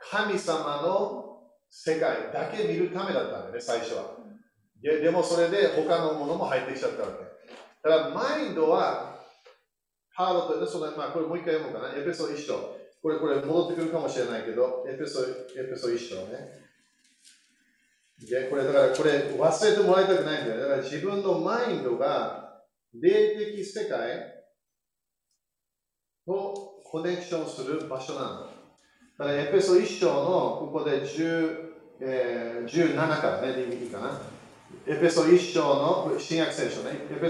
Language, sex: Japanese, male